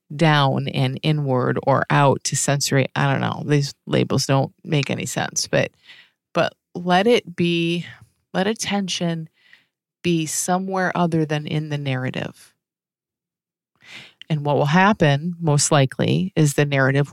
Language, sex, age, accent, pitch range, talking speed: English, female, 30-49, American, 140-180 Hz, 135 wpm